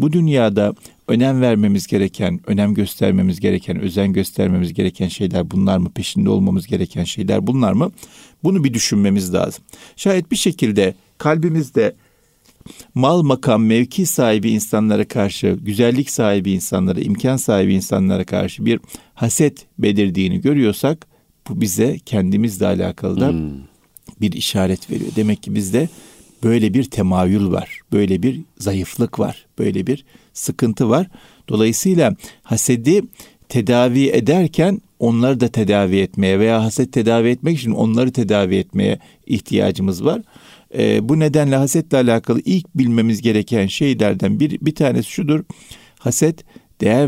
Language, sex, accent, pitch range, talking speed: Turkish, male, native, 100-140 Hz, 130 wpm